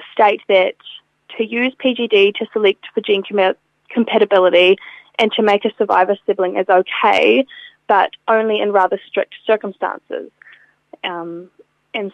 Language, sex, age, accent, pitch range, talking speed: English, female, 10-29, Australian, 195-235 Hz, 130 wpm